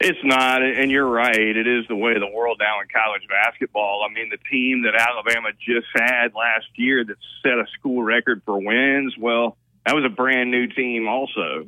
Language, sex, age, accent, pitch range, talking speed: English, male, 40-59, American, 105-125 Hz, 210 wpm